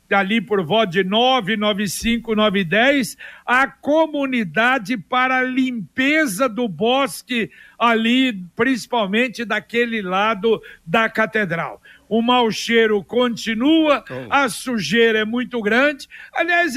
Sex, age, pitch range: male, 60-79, 210-255 Hz